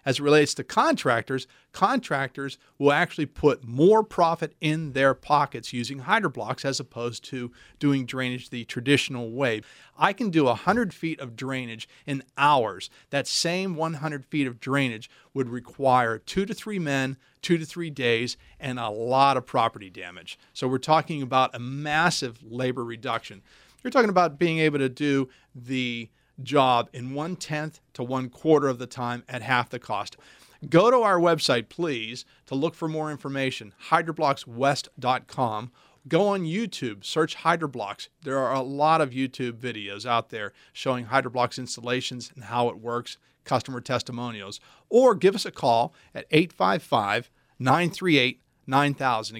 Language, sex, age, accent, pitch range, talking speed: English, male, 40-59, American, 125-155 Hz, 150 wpm